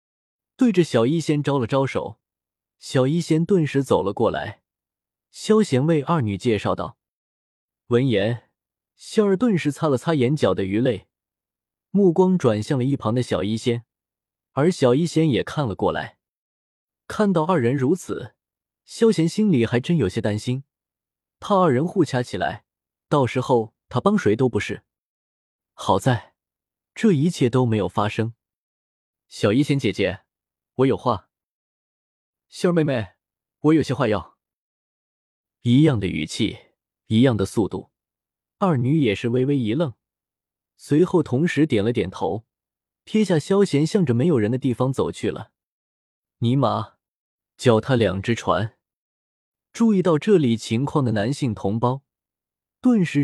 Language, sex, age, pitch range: Chinese, male, 20-39, 110-160 Hz